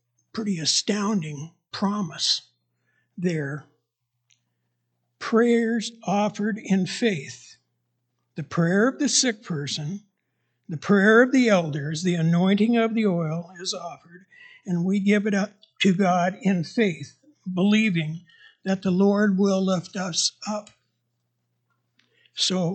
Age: 60-79